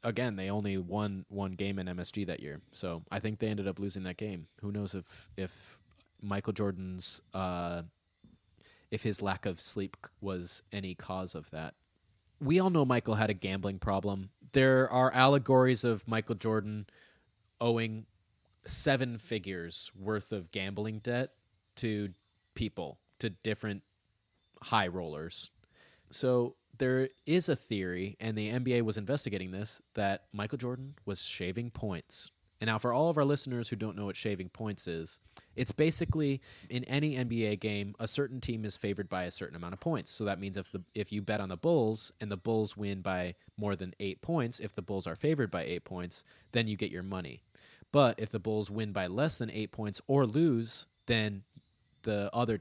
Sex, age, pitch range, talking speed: male, 20-39, 95-115 Hz, 180 wpm